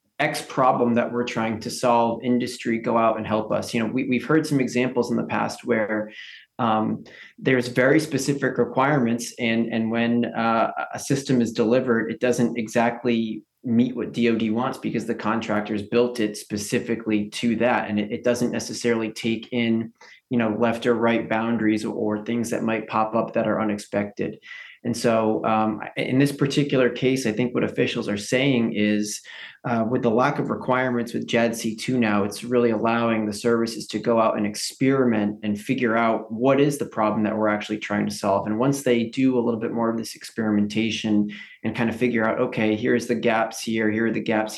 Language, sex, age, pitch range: English, male, 20-39, 110-120 Hz